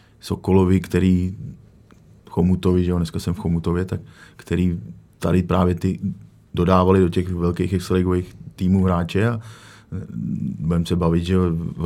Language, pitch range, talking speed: Czech, 85-90 Hz, 125 wpm